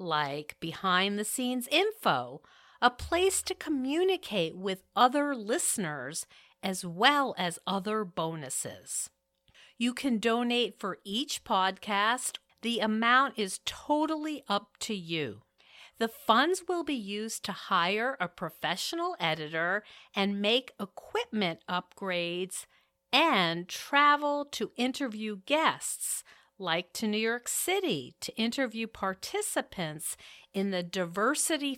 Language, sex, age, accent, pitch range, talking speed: English, female, 50-69, American, 180-265 Hz, 110 wpm